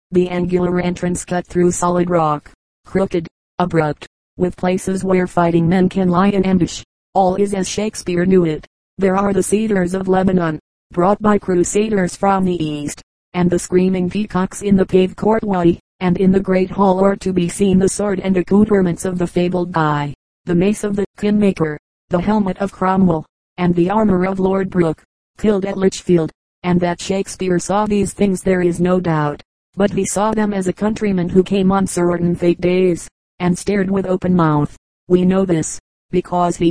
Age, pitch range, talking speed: 40-59, 175-195 Hz, 185 wpm